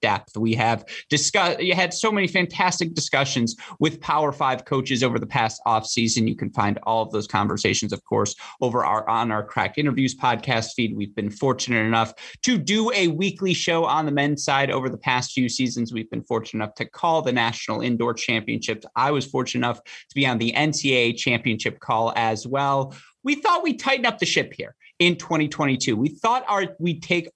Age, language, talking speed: 30-49, English, 200 wpm